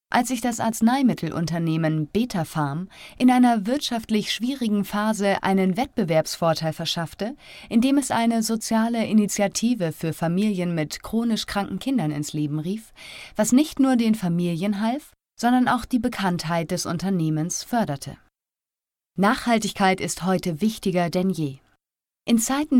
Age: 30-49